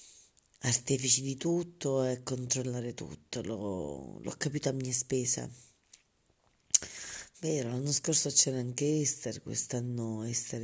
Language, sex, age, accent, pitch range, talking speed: Italian, female, 40-59, native, 125-150 Hz, 115 wpm